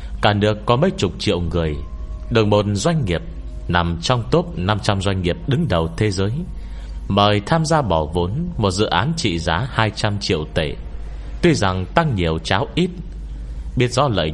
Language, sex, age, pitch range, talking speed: Vietnamese, male, 30-49, 75-110 Hz, 185 wpm